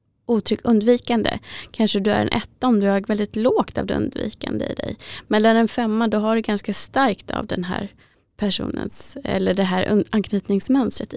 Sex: female